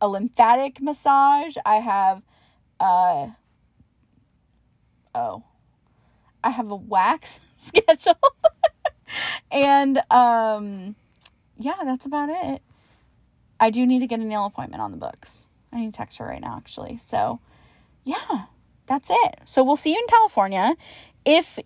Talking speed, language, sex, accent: 135 wpm, English, female, American